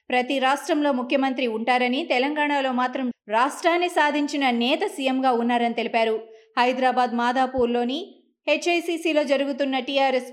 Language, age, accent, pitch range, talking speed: Telugu, 20-39, native, 230-280 Hz, 100 wpm